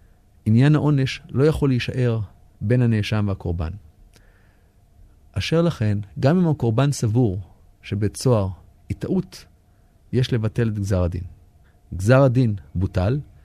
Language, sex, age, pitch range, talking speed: Hebrew, male, 30-49, 95-125 Hz, 115 wpm